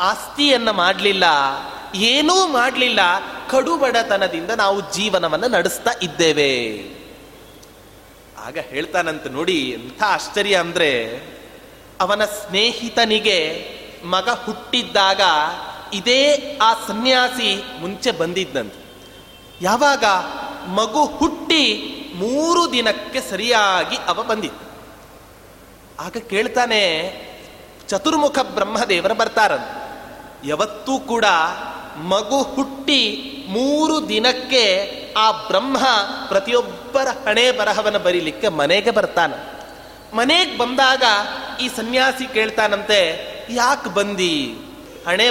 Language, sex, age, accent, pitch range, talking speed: Kannada, male, 30-49, native, 200-285 Hz, 80 wpm